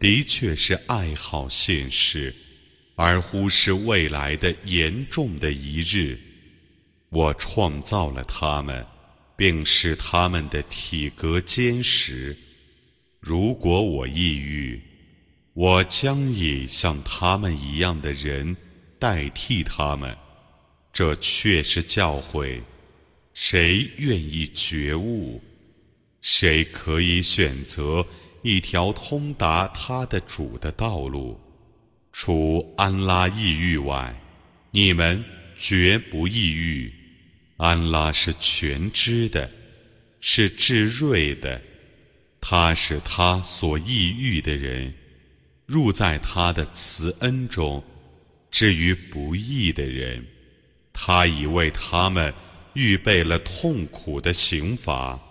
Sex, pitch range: male, 75-95 Hz